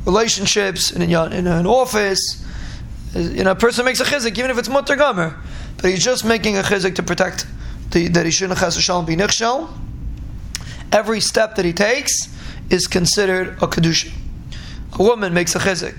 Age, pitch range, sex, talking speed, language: 20-39, 180-205 Hz, male, 160 wpm, English